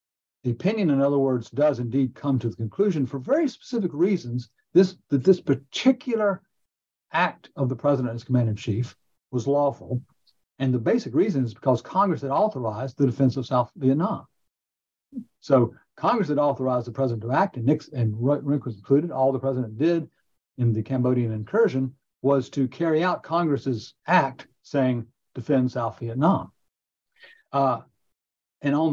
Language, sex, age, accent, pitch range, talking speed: English, male, 60-79, American, 120-145 Hz, 160 wpm